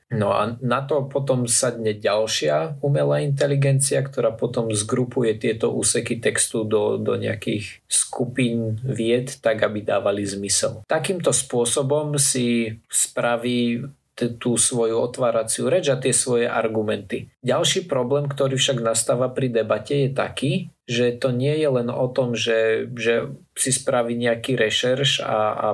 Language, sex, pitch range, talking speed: Slovak, male, 115-135 Hz, 140 wpm